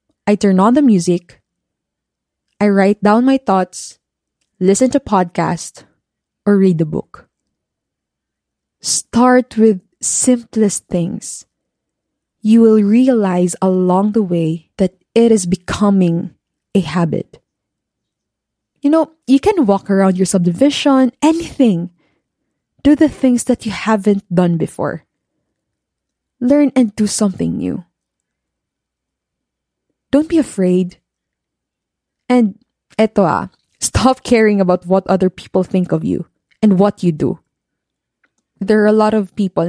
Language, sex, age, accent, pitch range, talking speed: English, female, 20-39, Filipino, 185-235 Hz, 120 wpm